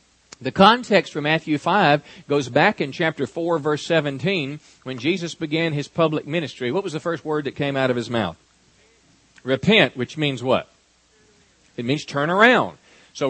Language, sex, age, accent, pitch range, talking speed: English, male, 40-59, American, 135-175 Hz, 170 wpm